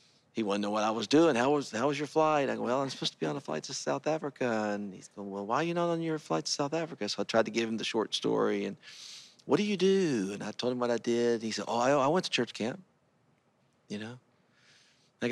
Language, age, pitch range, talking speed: English, 40-59, 105-125 Hz, 290 wpm